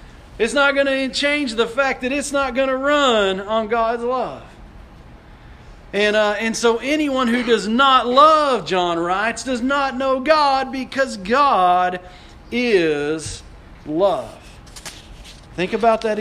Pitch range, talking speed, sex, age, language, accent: 180-255 Hz, 140 wpm, male, 40-59, English, American